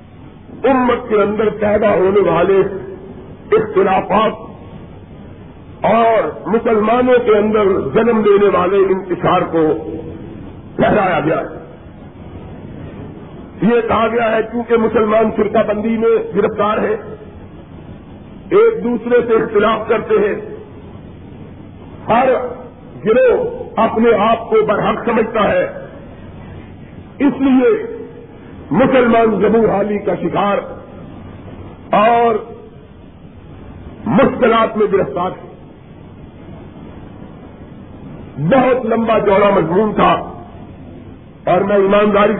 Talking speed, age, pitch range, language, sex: 90 wpm, 50-69, 195-235 Hz, Urdu, male